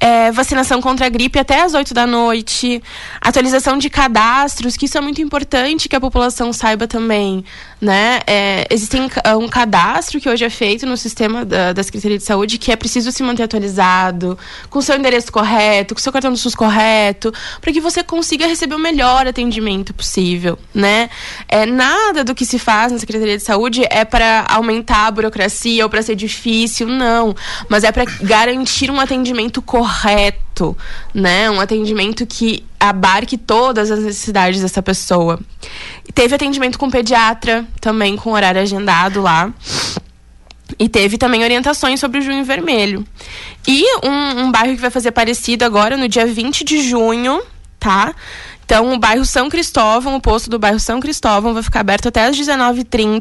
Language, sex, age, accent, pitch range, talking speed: Portuguese, female, 20-39, Brazilian, 215-260 Hz, 170 wpm